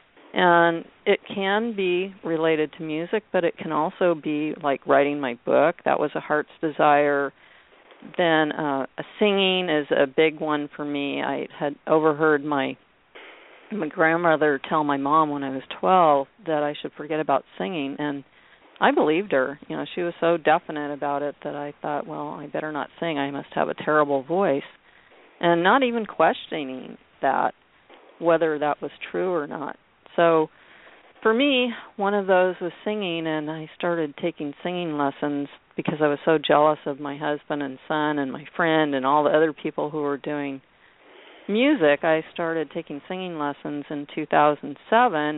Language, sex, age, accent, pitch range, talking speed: English, female, 50-69, American, 145-175 Hz, 170 wpm